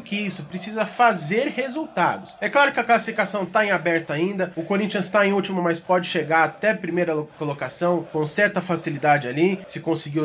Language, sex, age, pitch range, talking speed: Portuguese, male, 20-39, 175-215 Hz, 185 wpm